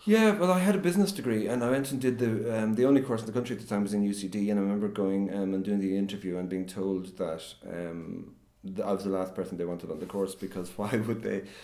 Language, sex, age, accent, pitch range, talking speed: English, male, 40-59, Irish, 90-110 Hz, 280 wpm